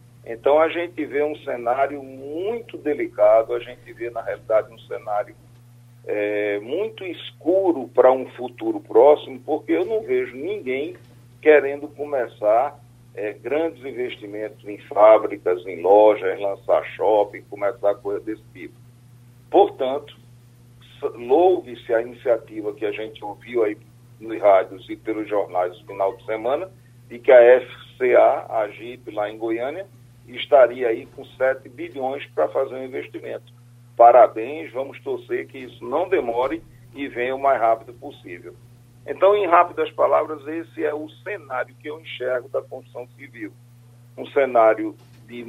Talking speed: 140 wpm